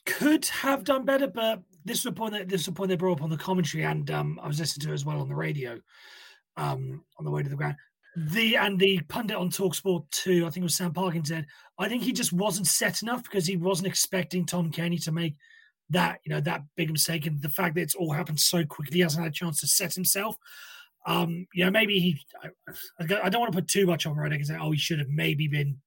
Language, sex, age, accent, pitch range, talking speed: English, male, 30-49, British, 150-195 Hz, 260 wpm